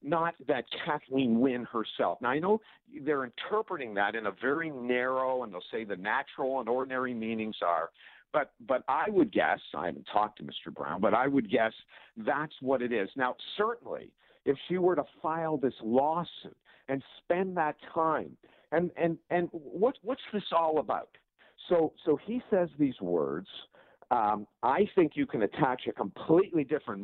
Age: 50-69